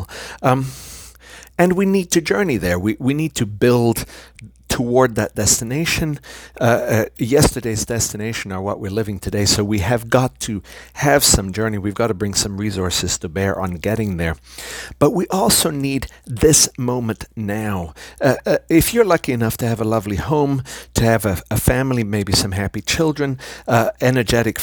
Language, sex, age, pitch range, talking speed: English, male, 50-69, 105-135 Hz, 175 wpm